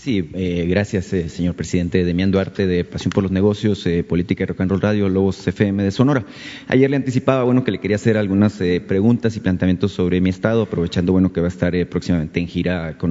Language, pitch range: Spanish, 95-120 Hz